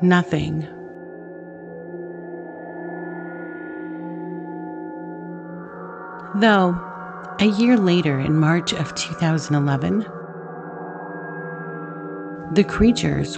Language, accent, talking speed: English, American, 50 wpm